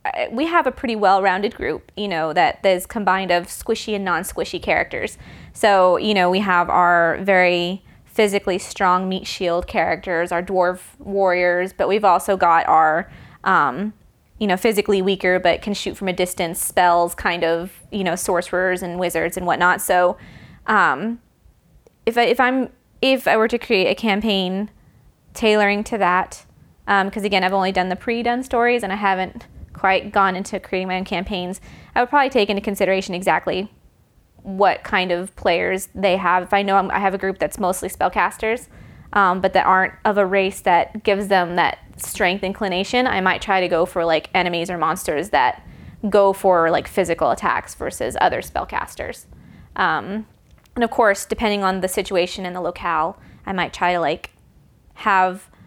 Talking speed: 175 wpm